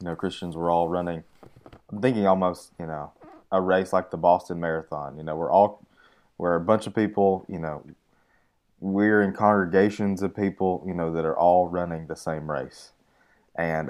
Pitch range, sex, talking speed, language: 85-95 Hz, male, 185 wpm, English